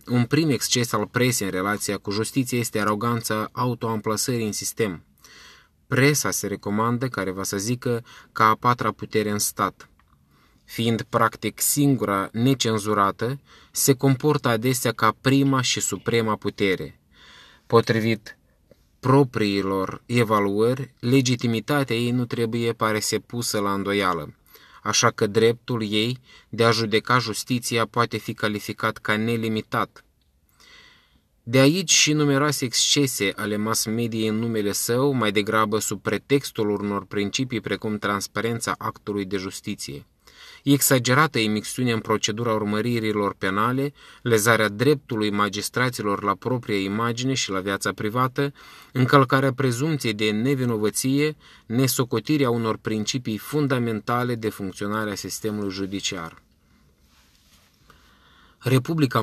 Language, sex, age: Romanian, male, 20-39